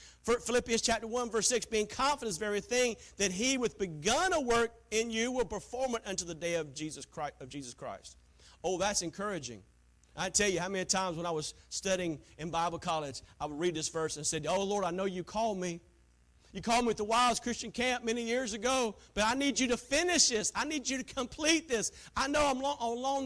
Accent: American